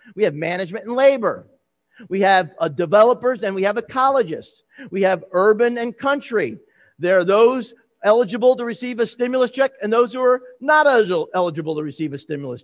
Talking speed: 175 wpm